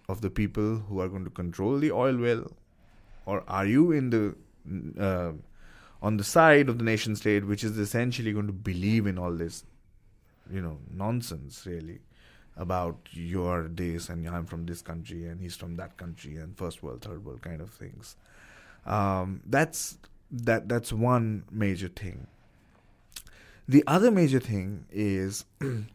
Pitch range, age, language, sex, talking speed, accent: 95-120 Hz, 30-49, English, male, 165 wpm, Indian